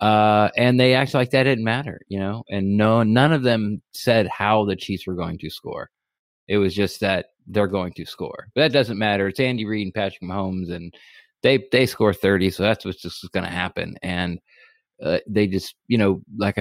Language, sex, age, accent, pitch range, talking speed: English, male, 20-39, American, 95-120 Hz, 215 wpm